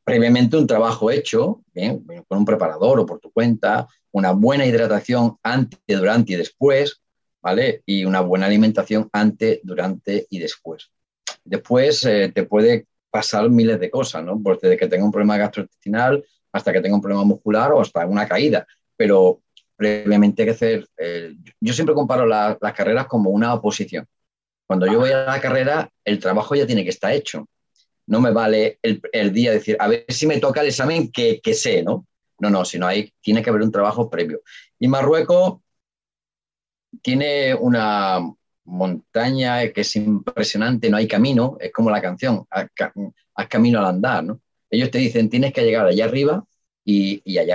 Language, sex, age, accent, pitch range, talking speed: Spanish, male, 40-59, Spanish, 105-135 Hz, 175 wpm